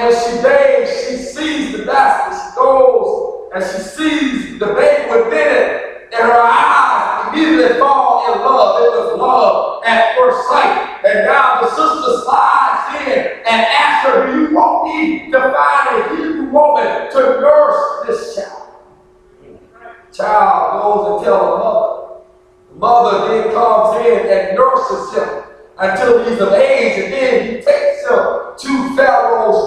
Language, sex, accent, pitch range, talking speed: English, male, American, 250-370 Hz, 160 wpm